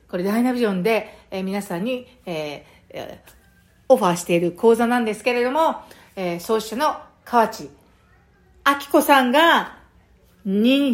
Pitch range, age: 205-275 Hz, 50-69